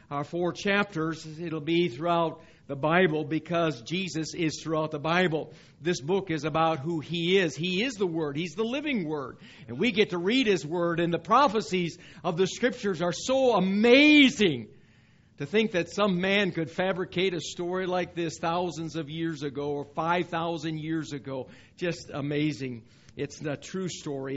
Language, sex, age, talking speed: English, male, 50-69, 170 wpm